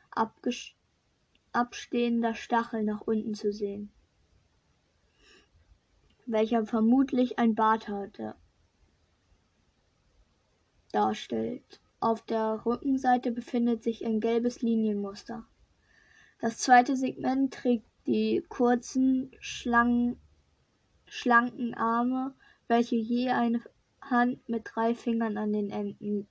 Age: 20-39